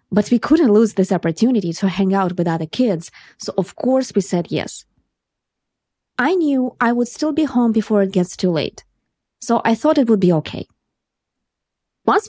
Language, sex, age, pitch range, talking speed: English, female, 20-39, 175-240 Hz, 185 wpm